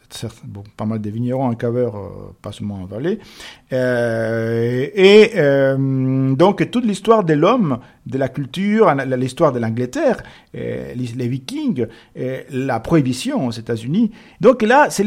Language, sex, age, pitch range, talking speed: French, male, 50-69, 125-180 Hz, 155 wpm